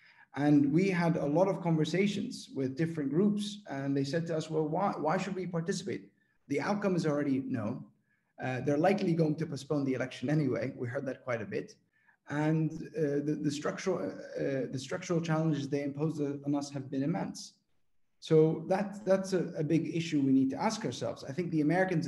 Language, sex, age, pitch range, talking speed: English, male, 30-49, 135-165 Hz, 200 wpm